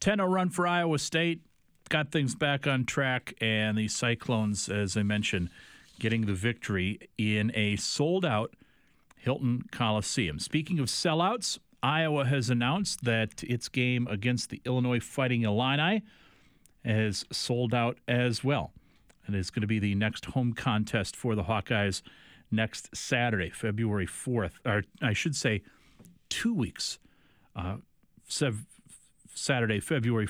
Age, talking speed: 40-59, 135 wpm